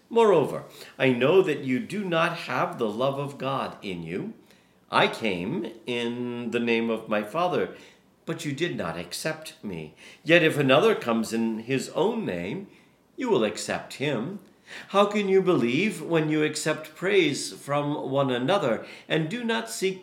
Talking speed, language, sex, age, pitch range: 165 wpm, English, male, 50-69, 120-185 Hz